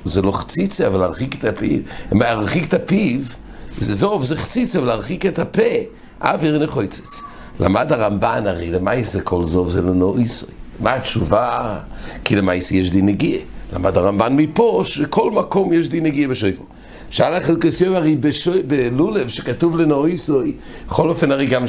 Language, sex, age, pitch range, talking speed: English, male, 60-79, 95-150 Hz, 125 wpm